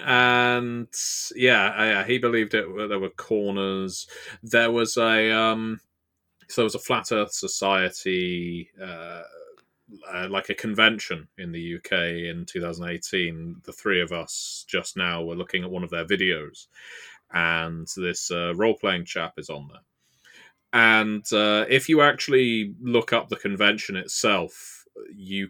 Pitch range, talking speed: 90-115 Hz, 140 wpm